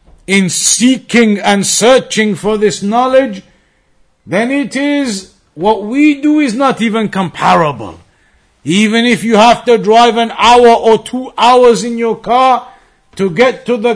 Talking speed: 150 wpm